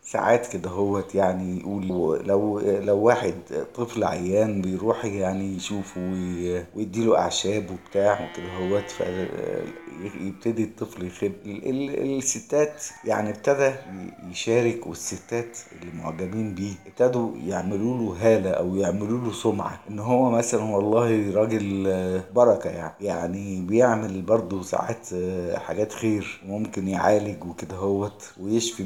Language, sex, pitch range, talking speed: Arabic, male, 95-120 Hz, 120 wpm